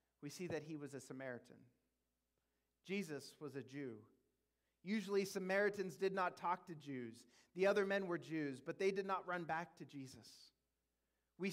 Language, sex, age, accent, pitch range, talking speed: English, male, 30-49, American, 130-200 Hz, 165 wpm